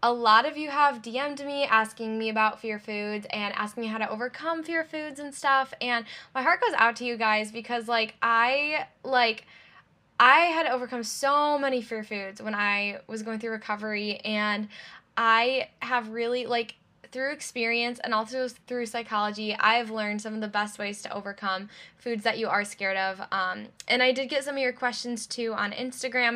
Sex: female